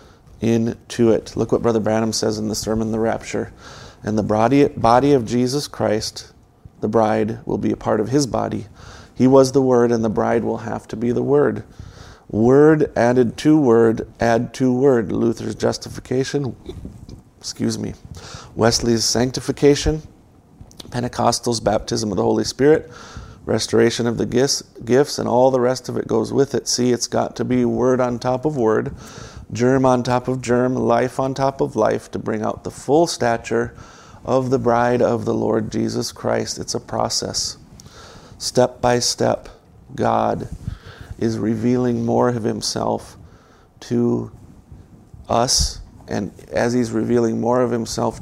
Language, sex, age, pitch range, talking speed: English, male, 40-59, 110-125 Hz, 160 wpm